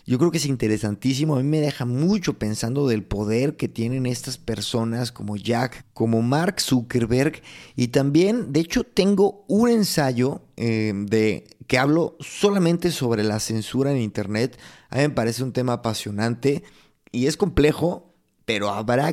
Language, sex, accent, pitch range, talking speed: Spanish, male, Mexican, 120-165 Hz, 160 wpm